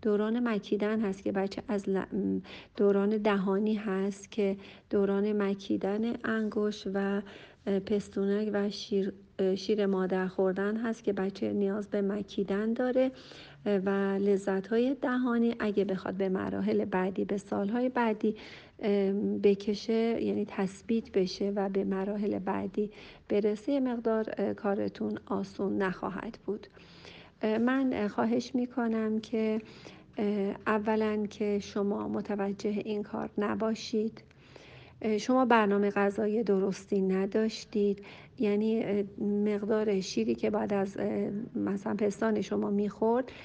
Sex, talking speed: female, 110 wpm